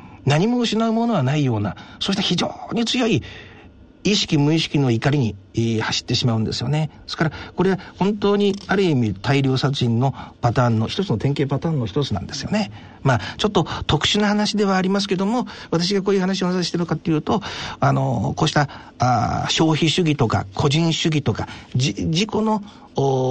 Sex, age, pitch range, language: male, 50-69, 125-195 Hz, Japanese